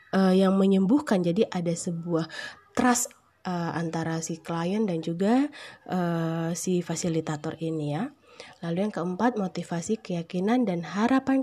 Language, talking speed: Indonesian, 130 wpm